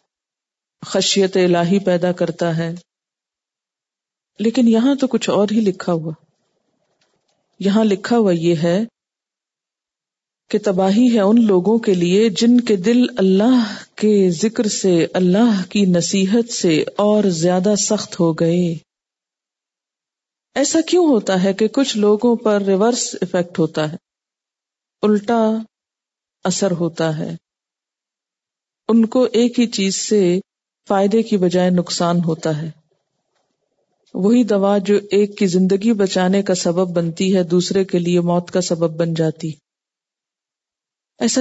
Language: Urdu